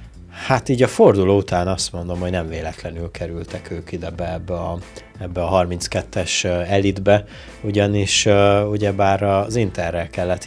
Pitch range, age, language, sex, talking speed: 90-100 Hz, 30-49, Hungarian, male, 145 wpm